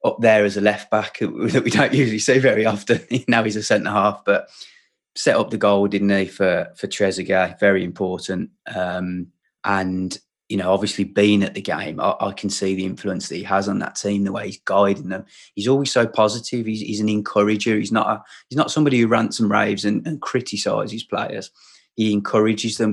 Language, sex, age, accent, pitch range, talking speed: English, male, 20-39, British, 100-115 Hz, 205 wpm